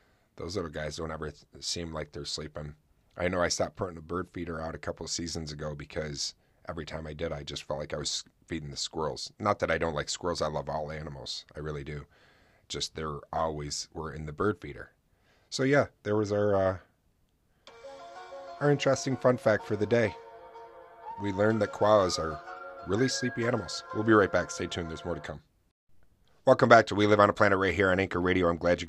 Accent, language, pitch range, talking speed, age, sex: American, English, 75-100 Hz, 220 wpm, 30-49, male